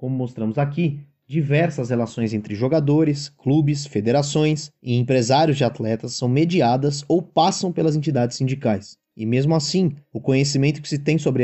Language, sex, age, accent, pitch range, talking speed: Portuguese, male, 20-39, Brazilian, 120-155 Hz, 150 wpm